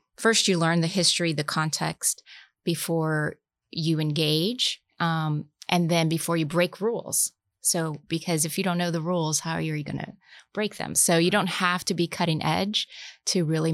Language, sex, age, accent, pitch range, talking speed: English, female, 20-39, American, 155-190 Hz, 185 wpm